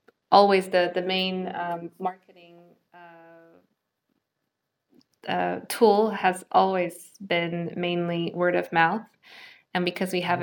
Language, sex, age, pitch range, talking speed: Polish, female, 20-39, 165-180 Hz, 115 wpm